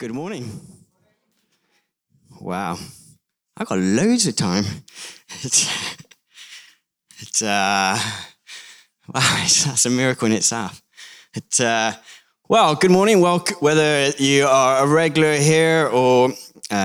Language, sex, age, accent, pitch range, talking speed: English, male, 20-39, British, 125-180 Hz, 115 wpm